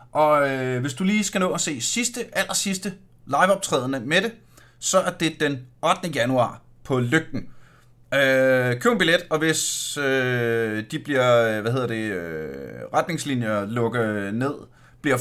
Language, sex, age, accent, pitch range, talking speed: Danish, male, 30-49, native, 120-175 Hz, 155 wpm